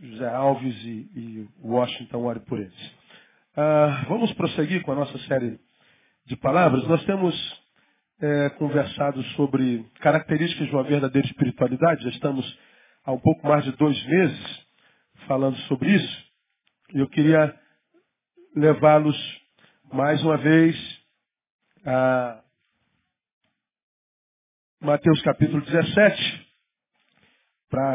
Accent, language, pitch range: Brazilian, Portuguese, 140-170 Hz